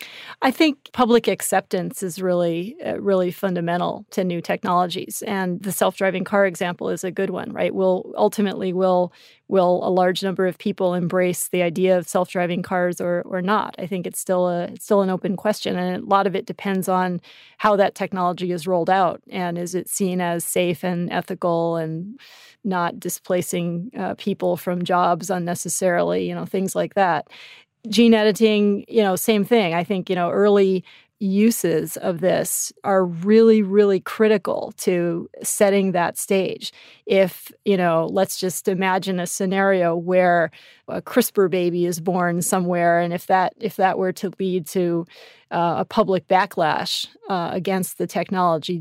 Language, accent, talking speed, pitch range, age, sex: English, American, 165 wpm, 175-200 Hz, 30-49, female